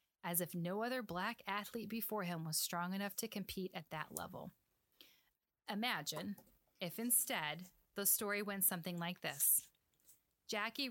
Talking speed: 145 wpm